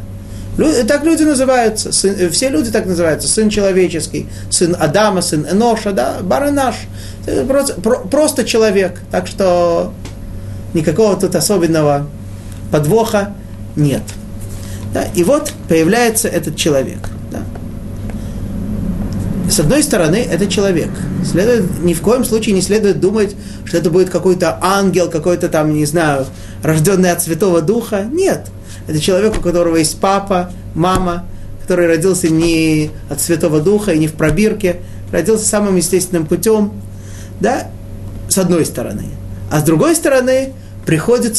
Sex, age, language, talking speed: male, 30-49, Russian, 125 wpm